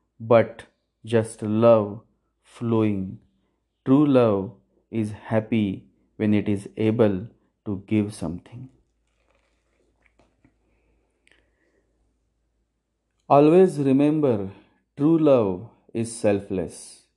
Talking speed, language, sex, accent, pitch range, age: 75 wpm, English, male, Indian, 105-135 Hz, 30-49